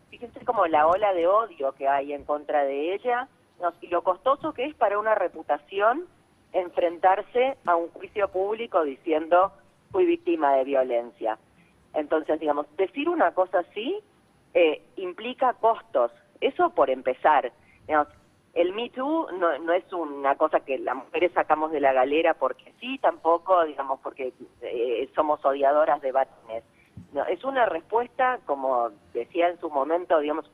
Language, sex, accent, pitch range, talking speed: Spanish, female, Argentinian, 145-235 Hz, 155 wpm